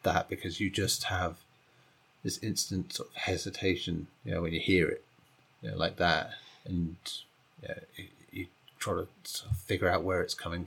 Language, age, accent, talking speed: English, 30-49, British, 185 wpm